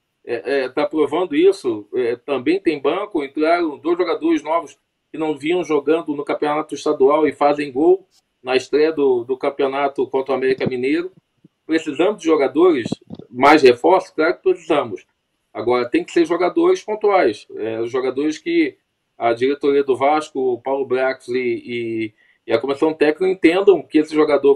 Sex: male